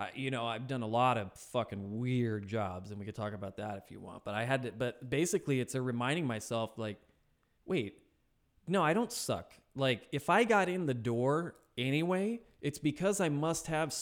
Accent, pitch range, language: American, 110-140 Hz, English